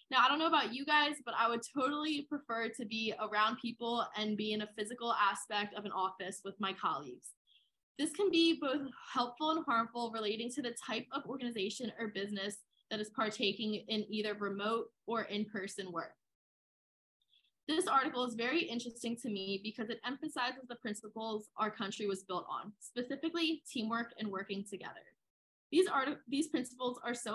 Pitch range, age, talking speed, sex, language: 205-255 Hz, 10-29, 175 wpm, female, English